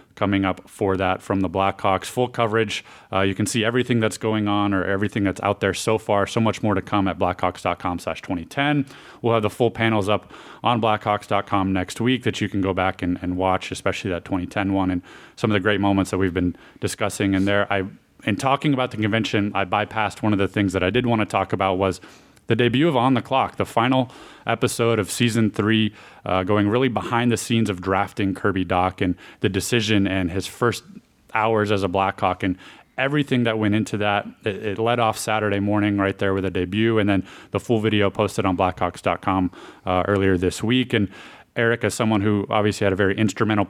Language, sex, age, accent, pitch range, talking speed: English, male, 30-49, American, 95-110 Hz, 215 wpm